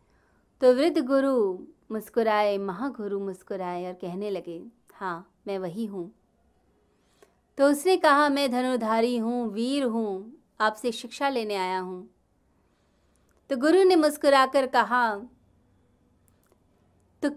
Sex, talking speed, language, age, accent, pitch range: female, 110 wpm, Hindi, 30-49, native, 200-275 Hz